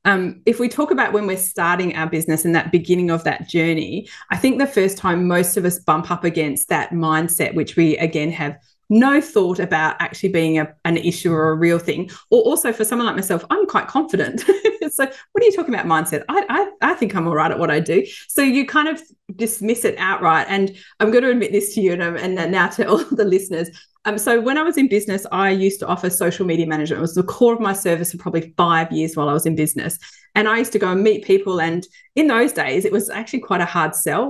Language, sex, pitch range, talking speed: English, female, 170-230 Hz, 250 wpm